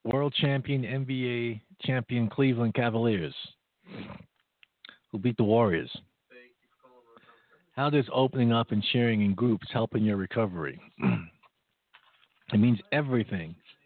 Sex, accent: male, American